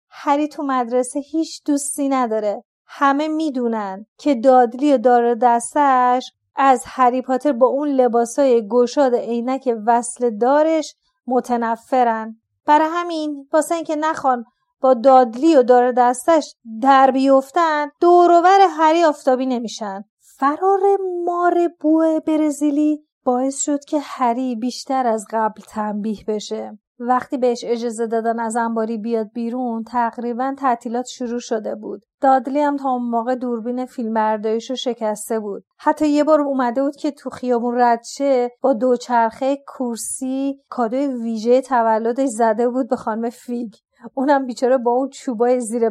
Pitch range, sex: 235-290 Hz, female